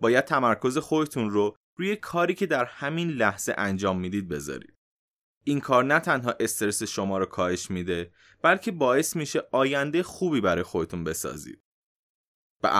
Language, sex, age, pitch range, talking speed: Persian, male, 20-39, 100-150 Hz, 145 wpm